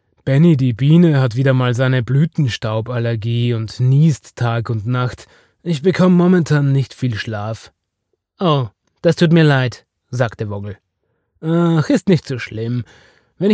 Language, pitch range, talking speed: German, 115-155 Hz, 140 wpm